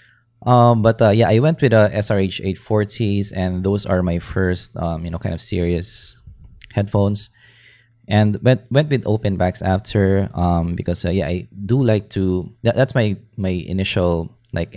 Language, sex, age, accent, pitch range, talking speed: English, male, 20-39, Filipino, 90-115 Hz, 170 wpm